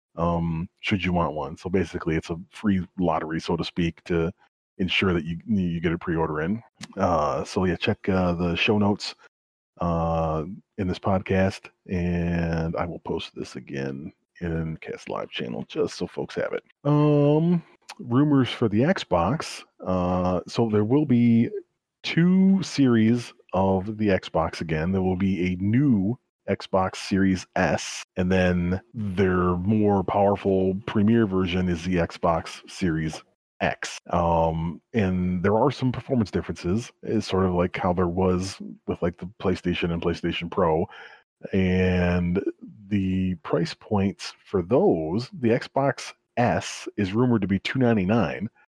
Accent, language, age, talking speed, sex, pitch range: American, English, 30-49, 150 wpm, male, 85-110 Hz